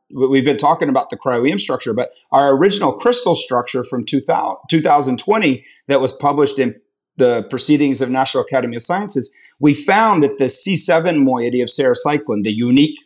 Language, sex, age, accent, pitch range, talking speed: English, male, 30-49, American, 130-180 Hz, 165 wpm